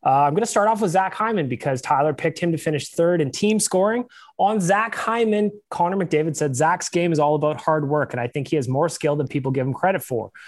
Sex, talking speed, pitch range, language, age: male, 260 wpm, 130-175 Hz, English, 20-39